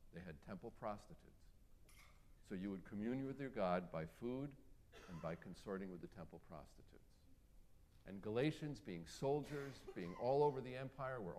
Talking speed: 160 wpm